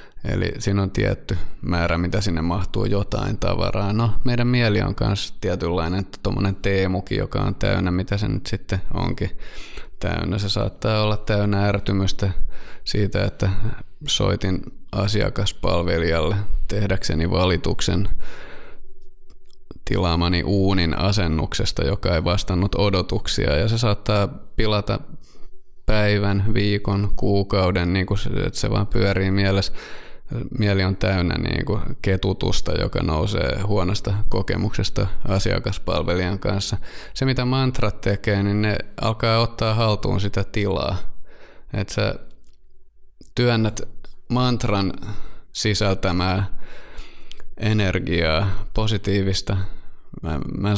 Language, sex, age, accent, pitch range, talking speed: Finnish, male, 20-39, native, 95-110 Hz, 110 wpm